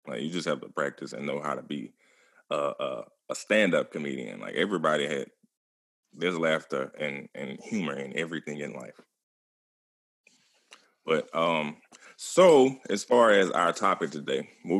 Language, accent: English, American